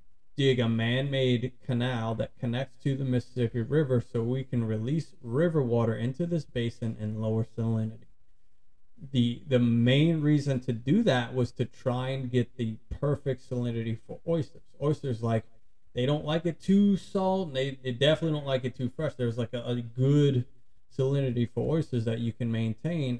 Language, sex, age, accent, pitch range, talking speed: English, male, 30-49, American, 115-135 Hz, 175 wpm